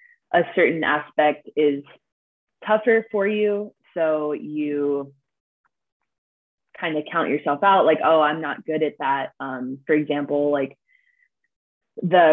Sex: female